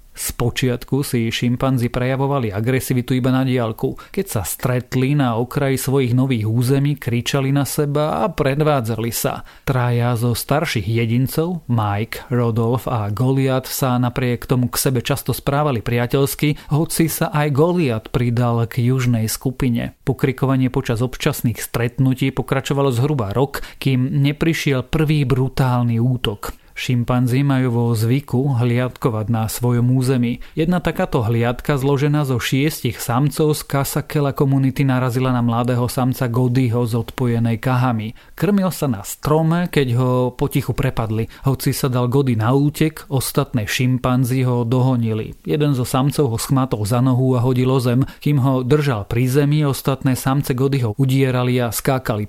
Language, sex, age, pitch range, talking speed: Slovak, male, 40-59, 120-140 Hz, 140 wpm